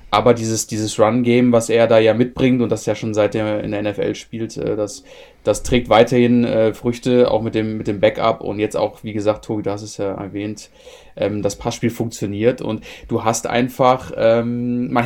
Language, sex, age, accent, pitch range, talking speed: German, male, 30-49, German, 115-145 Hz, 210 wpm